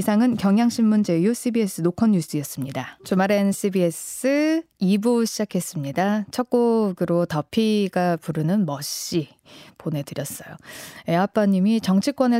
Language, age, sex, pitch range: Korean, 20-39, female, 165-220 Hz